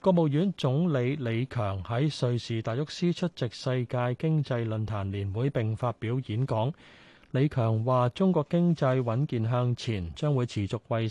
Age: 30-49